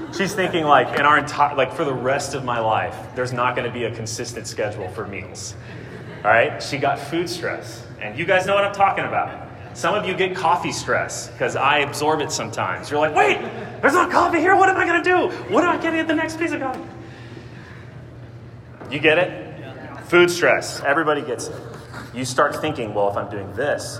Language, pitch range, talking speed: English, 115-130 Hz, 215 wpm